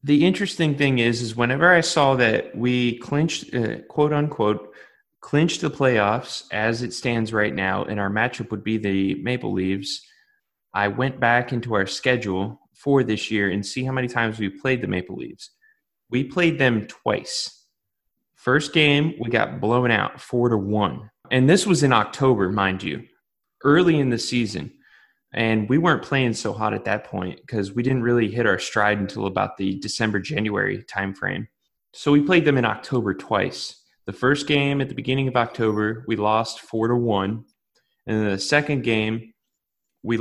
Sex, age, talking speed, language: male, 20-39, 180 wpm, English